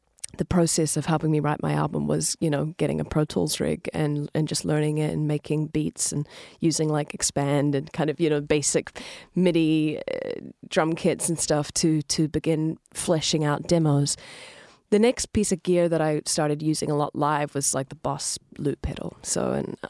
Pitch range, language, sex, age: 145-165 Hz, English, female, 30-49